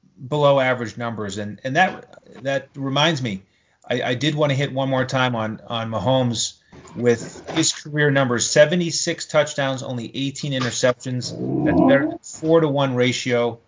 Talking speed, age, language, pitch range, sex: 160 wpm, 30-49, English, 115-145 Hz, male